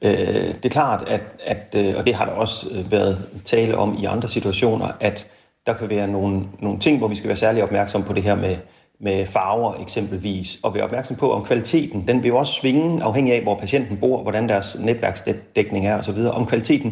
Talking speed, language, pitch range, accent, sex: 200 wpm, Danish, 100-130 Hz, native, male